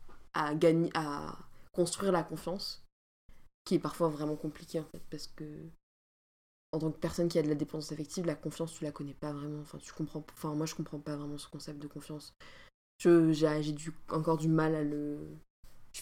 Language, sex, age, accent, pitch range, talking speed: French, female, 20-39, French, 155-185 Hz, 200 wpm